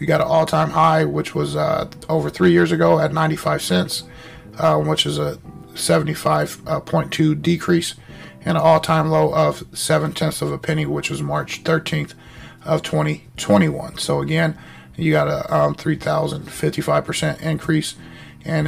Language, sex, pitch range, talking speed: English, male, 155-160 Hz, 155 wpm